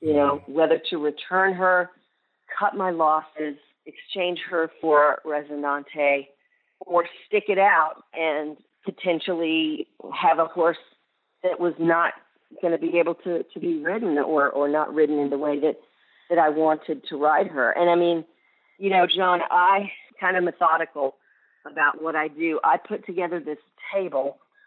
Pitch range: 150-185 Hz